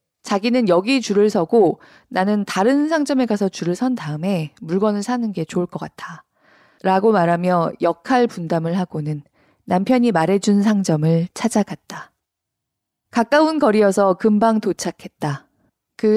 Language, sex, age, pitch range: Korean, female, 20-39, 170-230 Hz